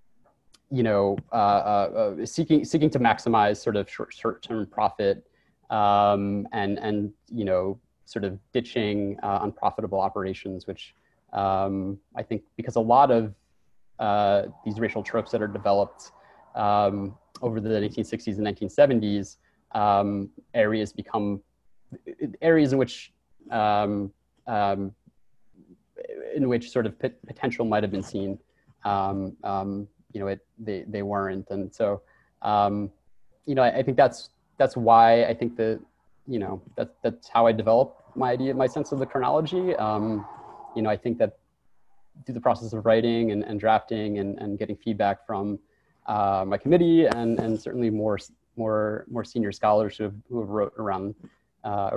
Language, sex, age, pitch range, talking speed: English, male, 30-49, 100-115 Hz, 155 wpm